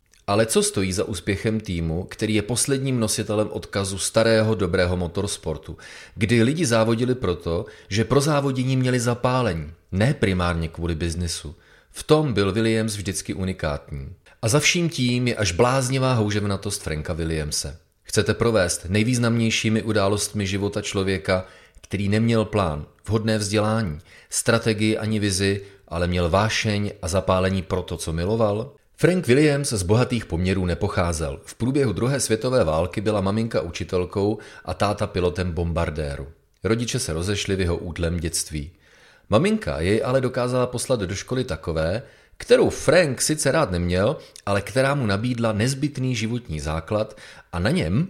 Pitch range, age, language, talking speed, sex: 85-115 Hz, 30-49, Czech, 140 wpm, male